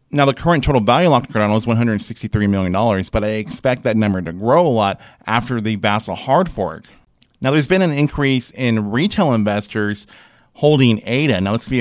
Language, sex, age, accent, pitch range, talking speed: English, male, 30-49, American, 110-140 Hz, 190 wpm